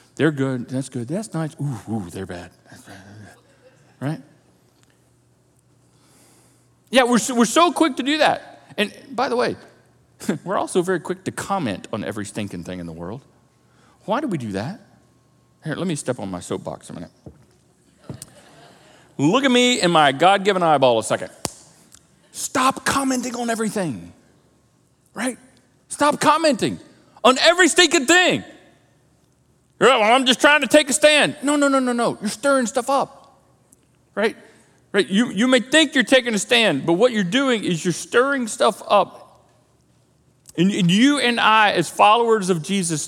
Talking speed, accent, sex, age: 160 wpm, American, male, 40-59